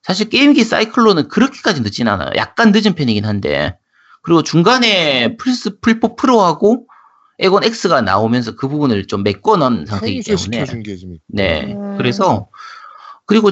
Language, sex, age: Korean, male, 40-59